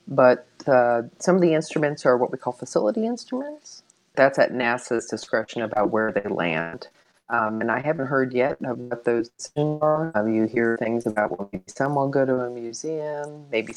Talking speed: 190 wpm